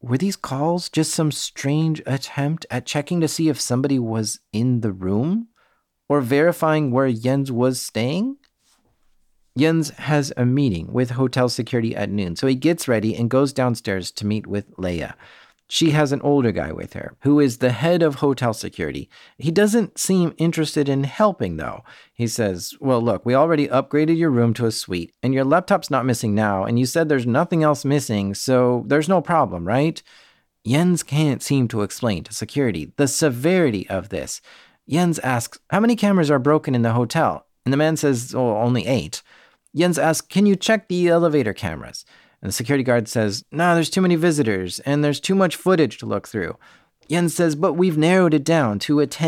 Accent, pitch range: American, 120-160 Hz